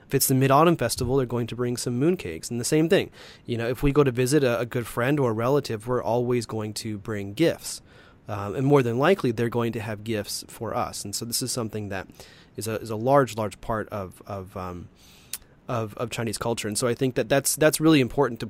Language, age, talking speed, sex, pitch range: English, 30-49, 255 wpm, male, 110-140 Hz